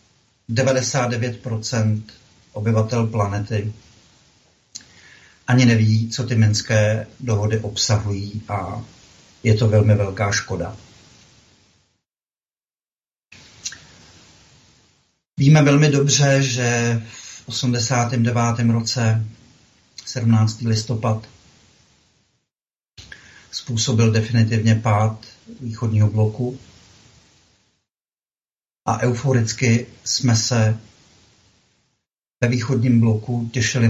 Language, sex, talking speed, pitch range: Czech, male, 65 wpm, 110-120 Hz